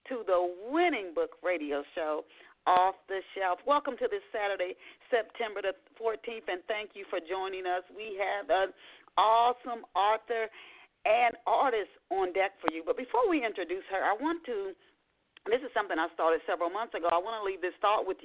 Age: 40-59